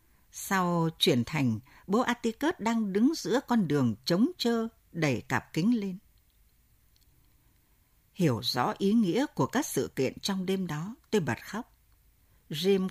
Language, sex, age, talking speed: Vietnamese, female, 60-79, 145 wpm